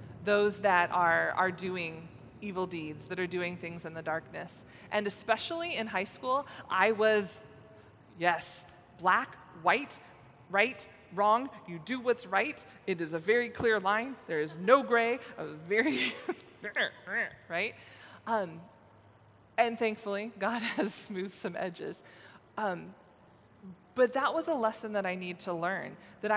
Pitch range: 175-220 Hz